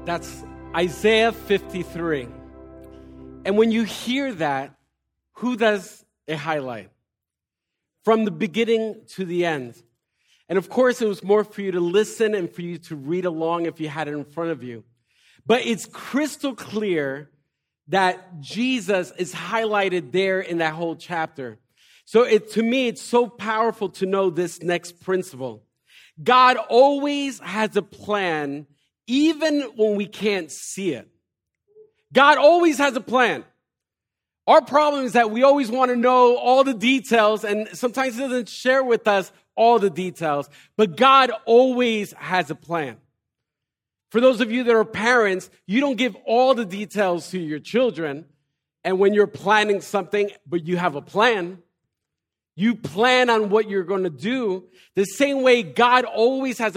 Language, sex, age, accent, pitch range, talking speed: English, male, 40-59, American, 160-235 Hz, 160 wpm